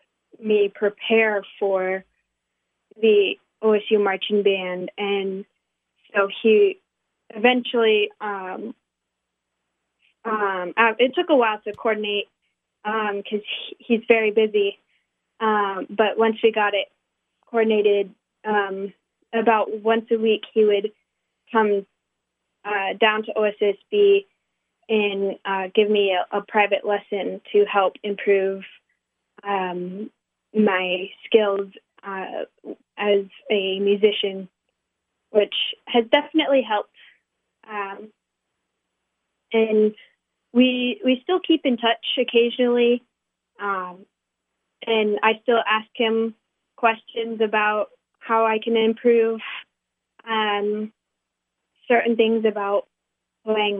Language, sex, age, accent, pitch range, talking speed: English, female, 20-39, American, 200-230 Hz, 100 wpm